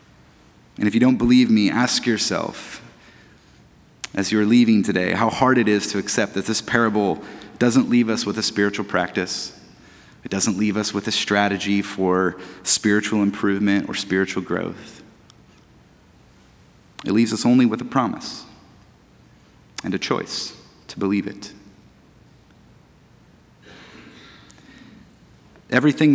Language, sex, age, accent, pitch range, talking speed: English, male, 30-49, American, 100-120 Hz, 125 wpm